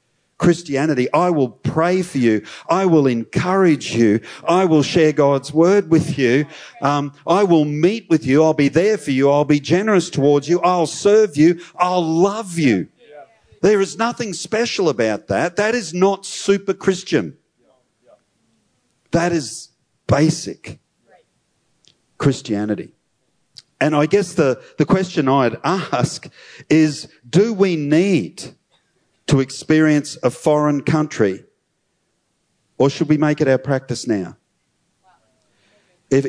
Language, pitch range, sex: English, 130-170 Hz, male